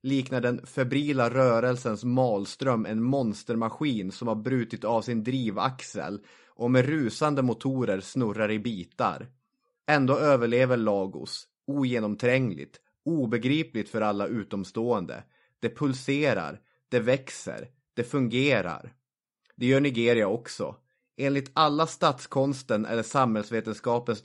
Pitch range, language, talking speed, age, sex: 110-130 Hz, English, 105 wpm, 30-49, male